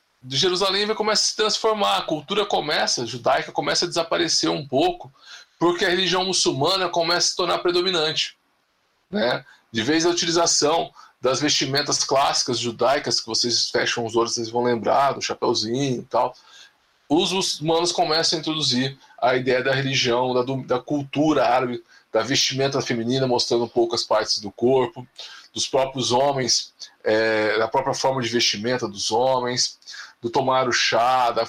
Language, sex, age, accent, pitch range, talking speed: Portuguese, male, 20-39, Brazilian, 115-155 Hz, 155 wpm